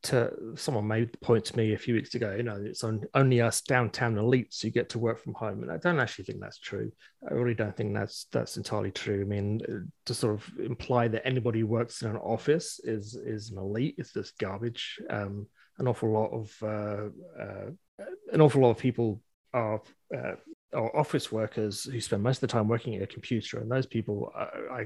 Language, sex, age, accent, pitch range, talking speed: English, male, 30-49, British, 110-140 Hz, 220 wpm